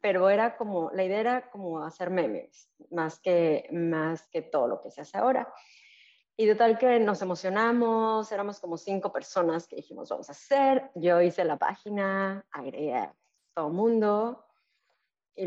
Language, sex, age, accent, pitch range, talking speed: Spanish, female, 30-49, Mexican, 175-220 Hz, 165 wpm